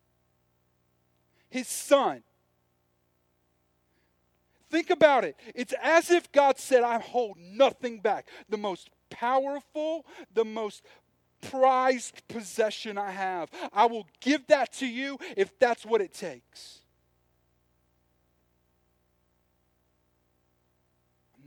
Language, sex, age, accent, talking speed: English, male, 40-59, American, 100 wpm